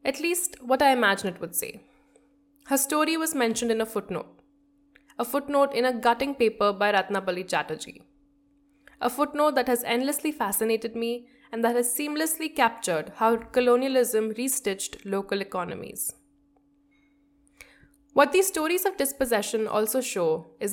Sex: female